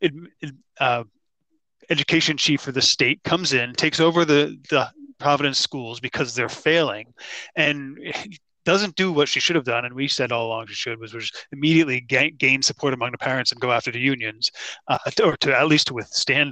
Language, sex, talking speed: English, male, 200 wpm